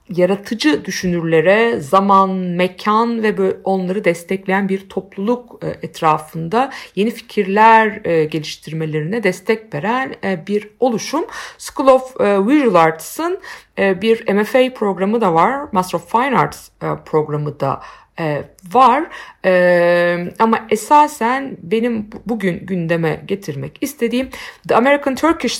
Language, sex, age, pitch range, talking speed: Turkish, female, 50-69, 180-255 Hz, 100 wpm